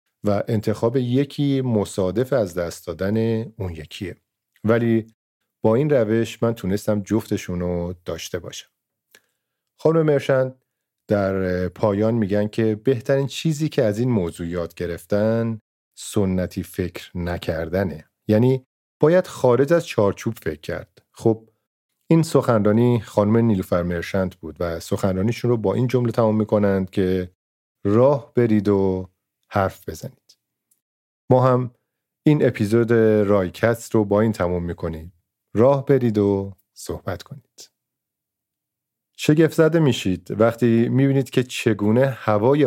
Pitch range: 95-120 Hz